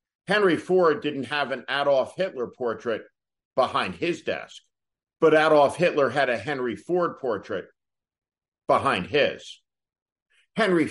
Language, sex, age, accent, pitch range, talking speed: English, male, 50-69, American, 130-185 Hz, 120 wpm